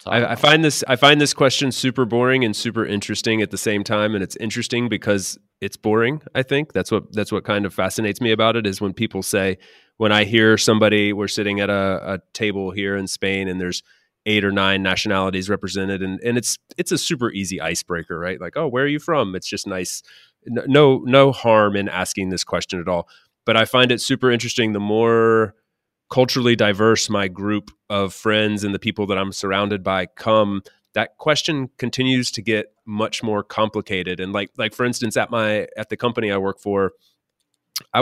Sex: male